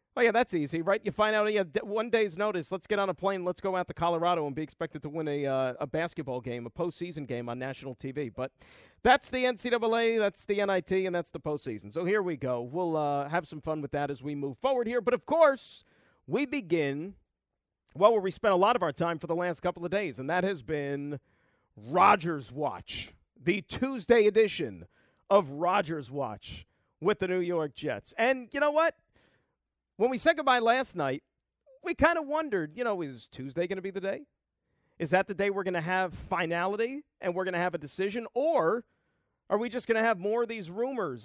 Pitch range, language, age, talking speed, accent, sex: 165-230 Hz, English, 40-59, 220 wpm, American, male